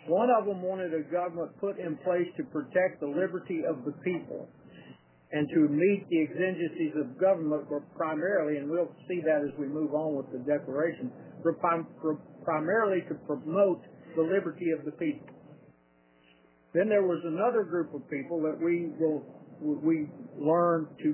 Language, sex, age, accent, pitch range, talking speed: English, male, 60-79, American, 145-180 Hz, 155 wpm